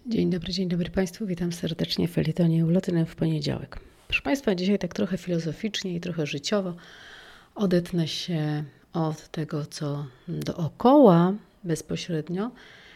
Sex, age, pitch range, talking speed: female, 40-59, 150-190 Hz, 125 wpm